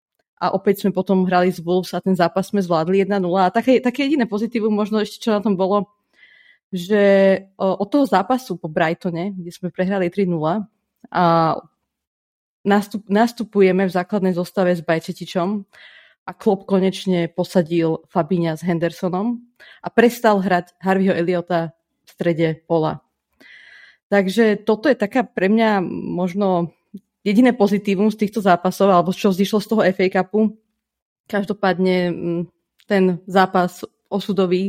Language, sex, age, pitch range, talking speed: Slovak, female, 30-49, 180-210 Hz, 140 wpm